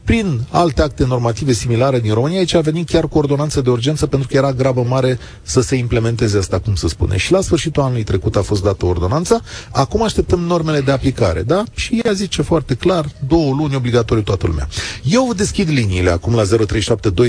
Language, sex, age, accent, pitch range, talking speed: Romanian, male, 40-59, native, 105-135 Hz, 200 wpm